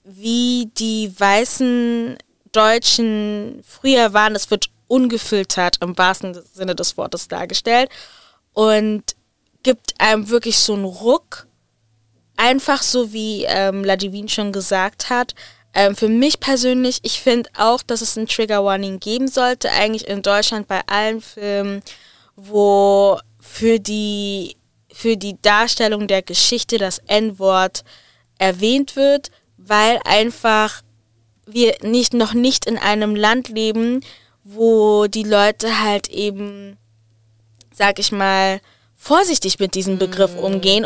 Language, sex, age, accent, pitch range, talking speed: German, female, 20-39, German, 200-240 Hz, 125 wpm